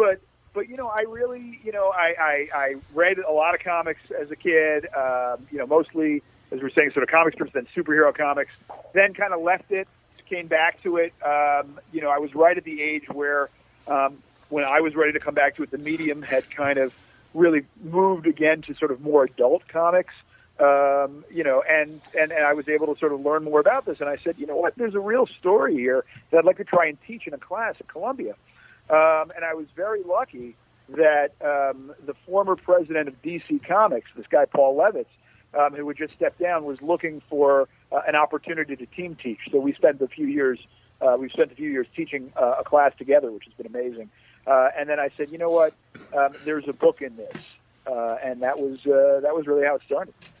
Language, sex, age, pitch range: English, male, 40-59, 140-170 Hz